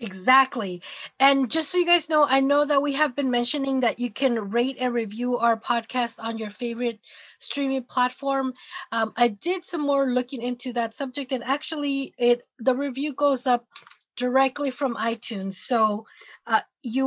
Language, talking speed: English, 170 wpm